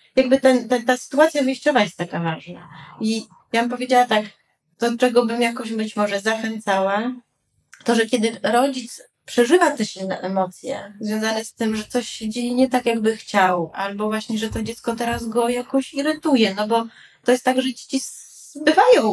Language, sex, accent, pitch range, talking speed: Polish, female, native, 205-250 Hz, 180 wpm